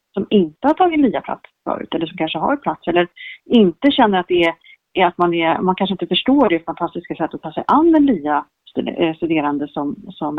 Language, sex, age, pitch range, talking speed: Swedish, female, 30-49, 170-210 Hz, 200 wpm